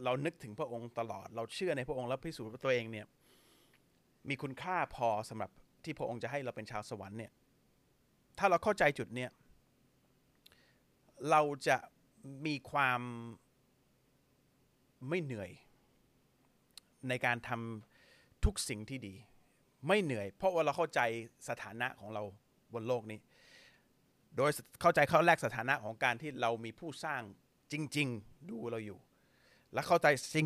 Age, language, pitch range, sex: 30-49, Thai, 120-155 Hz, male